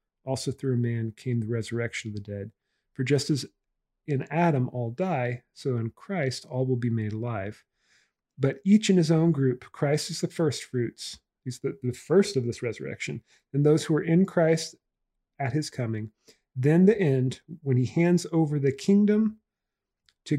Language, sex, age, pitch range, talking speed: English, male, 40-59, 120-155 Hz, 180 wpm